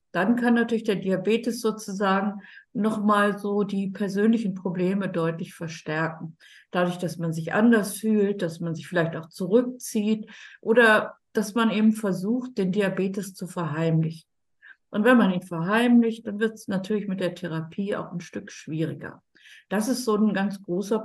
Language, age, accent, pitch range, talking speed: German, 50-69, German, 170-215 Hz, 160 wpm